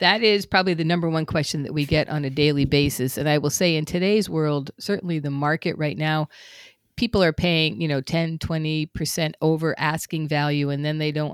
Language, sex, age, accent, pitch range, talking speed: English, female, 50-69, American, 145-175 Hz, 210 wpm